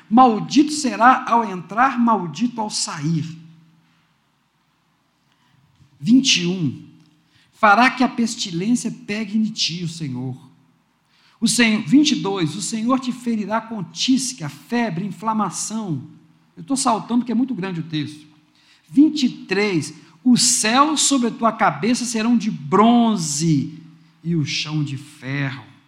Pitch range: 160-235 Hz